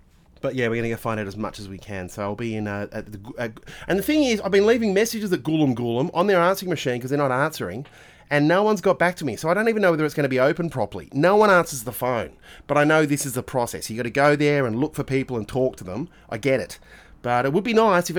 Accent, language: Australian, English